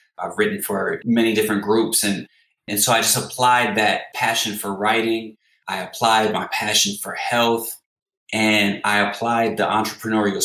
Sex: male